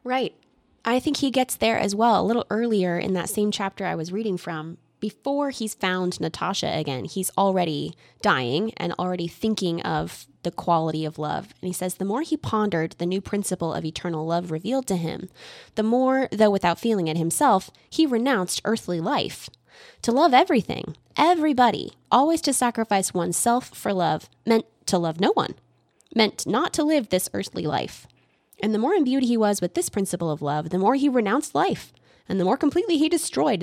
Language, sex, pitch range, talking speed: English, female, 175-245 Hz, 190 wpm